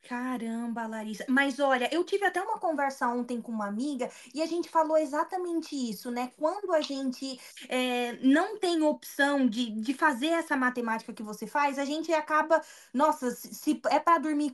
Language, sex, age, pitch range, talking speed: Portuguese, female, 20-39, 255-325 Hz, 180 wpm